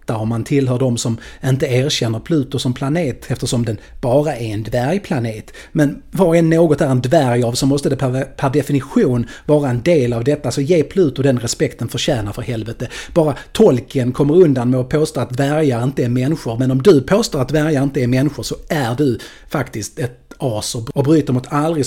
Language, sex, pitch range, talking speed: Swedish, male, 120-150 Hz, 205 wpm